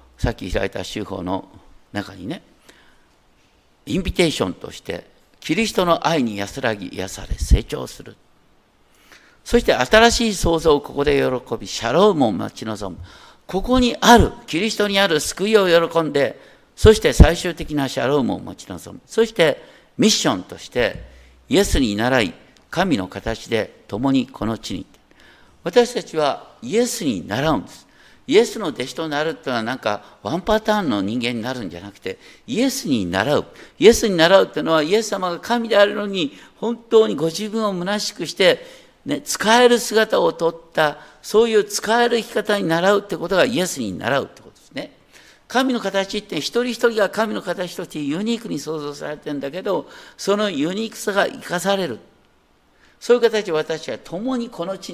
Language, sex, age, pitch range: Japanese, male, 50-69, 140-220 Hz